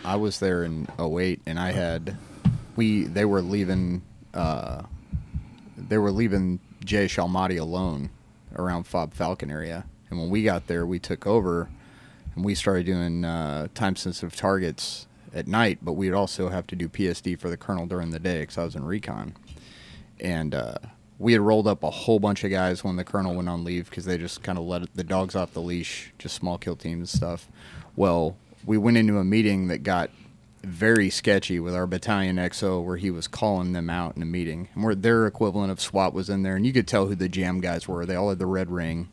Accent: American